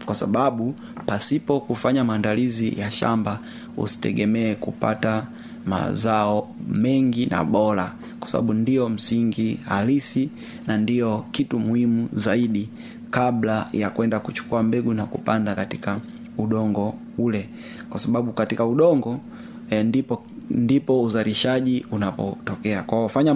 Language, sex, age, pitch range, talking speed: Swahili, male, 30-49, 110-140 Hz, 115 wpm